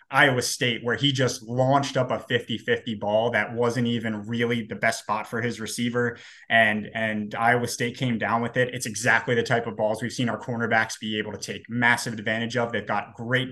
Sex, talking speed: male, 215 wpm